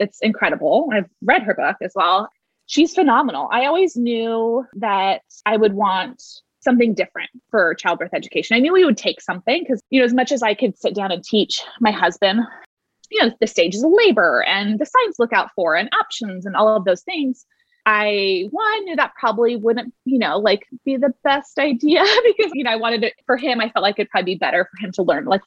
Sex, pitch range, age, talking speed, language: female, 190-255 Hz, 20-39, 220 wpm, English